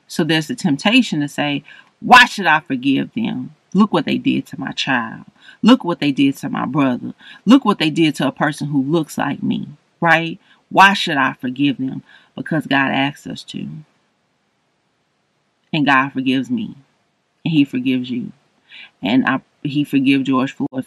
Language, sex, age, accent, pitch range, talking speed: English, female, 30-49, American, 145-225 Hz, 175 wpm